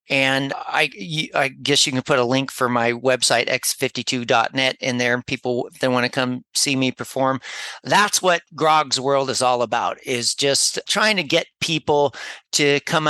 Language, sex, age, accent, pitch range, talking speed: English, male, 40-59, American, 125-145 Hz, 185 wpm